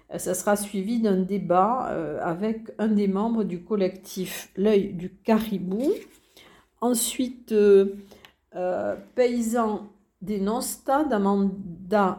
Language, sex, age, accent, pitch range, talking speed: French, female, 50-69, French, 175-220 Hz, 105 wpm